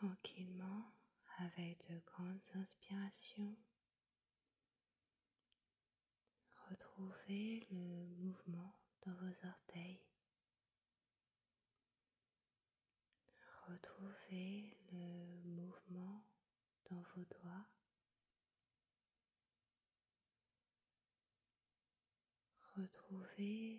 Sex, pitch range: female, 175-210 Hz